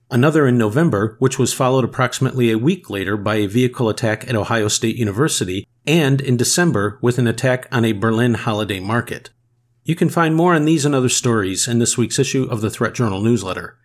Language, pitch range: English, 115-135 Hz